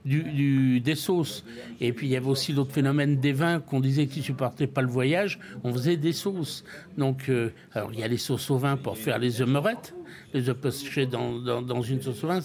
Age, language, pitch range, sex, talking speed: 60-79, French, 125-150 Hz, male, 230 wpm